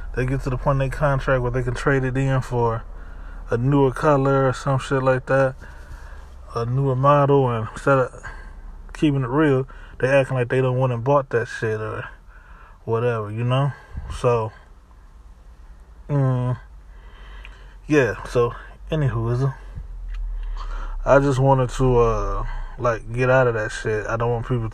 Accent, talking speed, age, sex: American, 160 wpm, 20-39, male